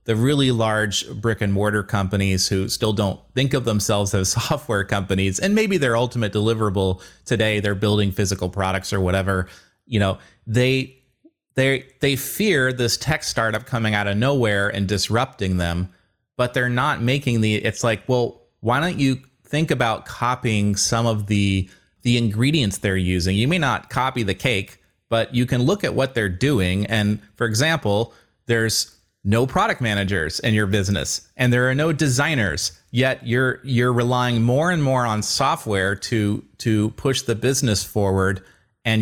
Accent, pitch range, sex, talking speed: American, 100-125 Hz, male, 170 wpm